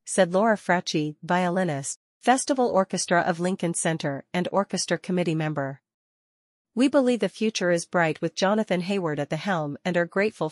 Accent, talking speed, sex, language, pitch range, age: American, 160 wpm, female, English, 165-195 Hz, 40-59